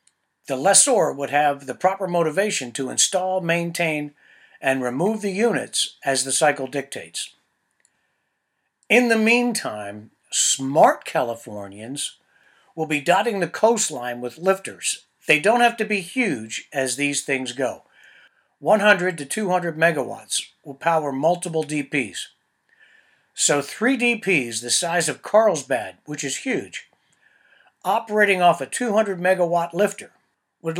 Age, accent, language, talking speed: 60-79, American, English, 125 wpm